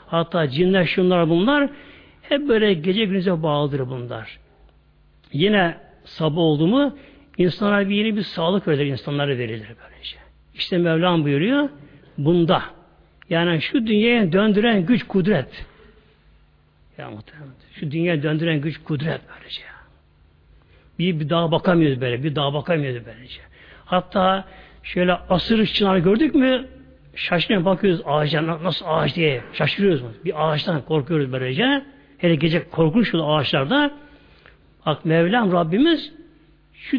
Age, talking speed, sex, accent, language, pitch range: 60-79, 120 wpm, male, native, Turkish, 150-205 Hz